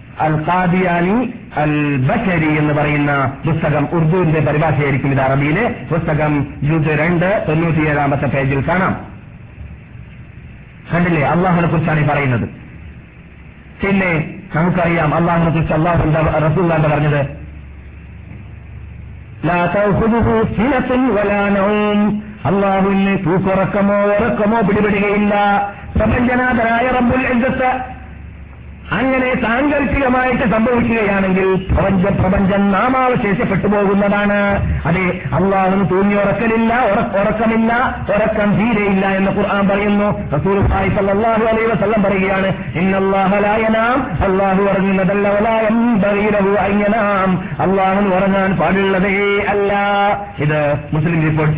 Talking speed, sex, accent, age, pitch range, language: 35 wpm, male, native, 50-69, 155-205 Hz, Malayalam